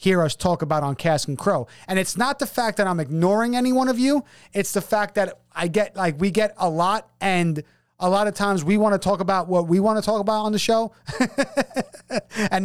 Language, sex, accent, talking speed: English, male, American, 240 wpm